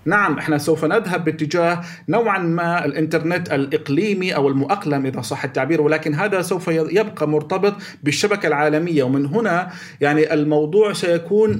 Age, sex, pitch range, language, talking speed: 40-59, male, 155-190 Hz, Arabic, 135 wpm